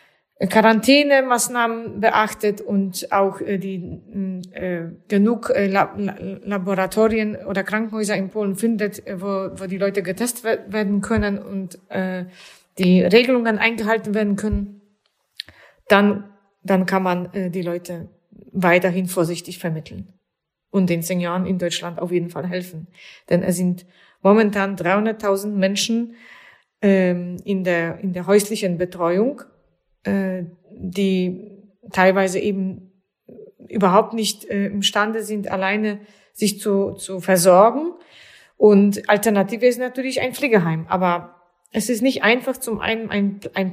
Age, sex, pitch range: 30-49, female, 190-225 Hz